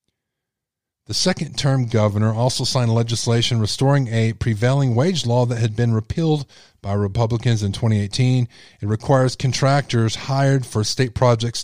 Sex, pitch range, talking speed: male, 105-130 Hz, 140 wpm